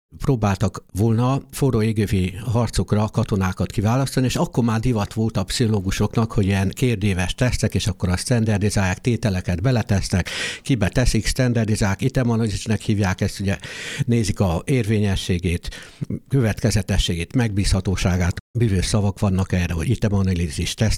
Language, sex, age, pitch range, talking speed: Hungarian, male, 60-79, 95-120 Hz, 120 wpm